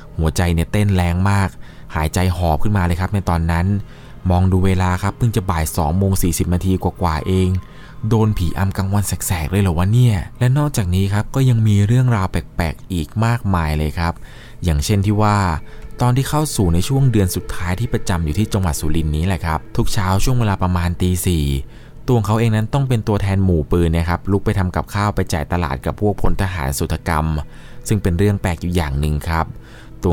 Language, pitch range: Thai, 85-115 Hz